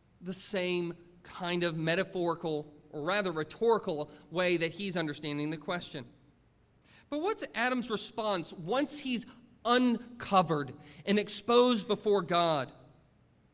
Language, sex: English, male